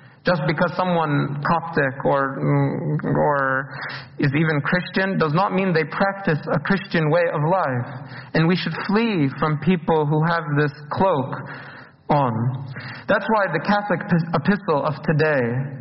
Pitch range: 140-185 Hz